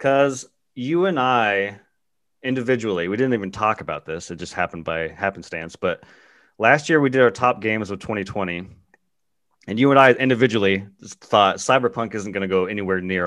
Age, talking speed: 30-49, 175 wpm